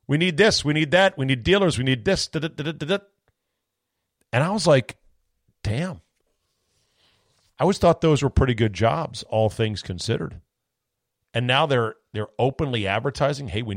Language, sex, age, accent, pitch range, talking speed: English, male, 40-59, American, 110-145 Hz, 180 wpm